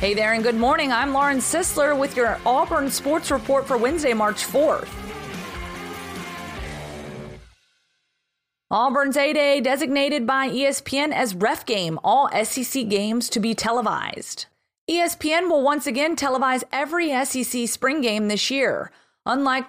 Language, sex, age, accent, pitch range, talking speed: English, female, 30-49, American, 215-275 Hz, 130 wpm